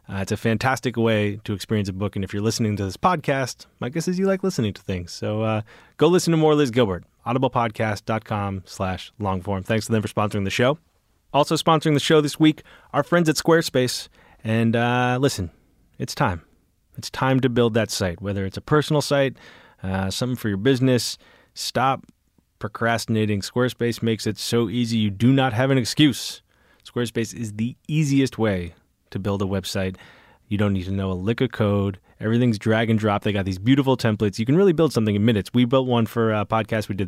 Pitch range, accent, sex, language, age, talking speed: 105-130 Hz, American, male, English, 30-49, 205 wpm